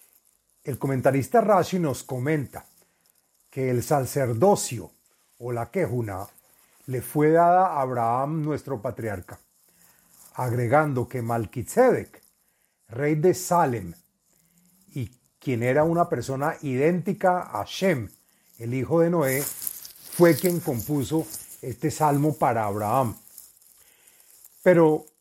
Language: Spanish